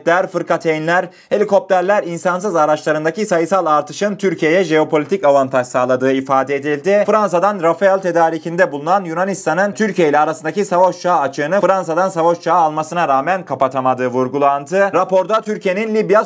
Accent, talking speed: native, 120 wpm